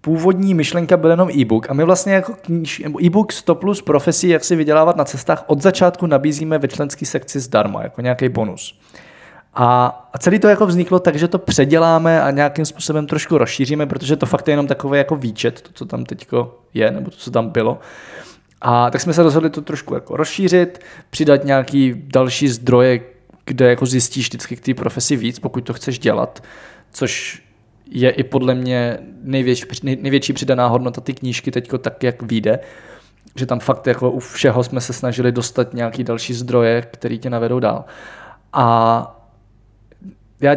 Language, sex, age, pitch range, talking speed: Czech, male, 20-39, 125-165 Hz, 175 wpm